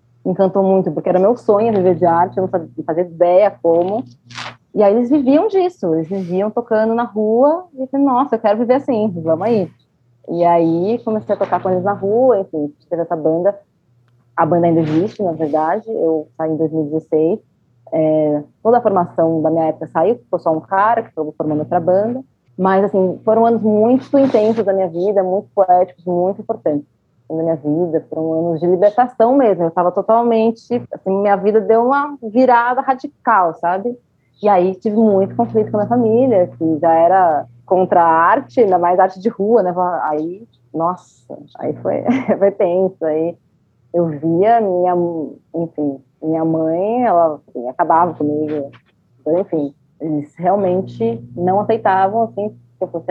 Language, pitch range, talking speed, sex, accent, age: Portuguese, 160-215 Hz, 170 wpm, female, Brazilian, 20-39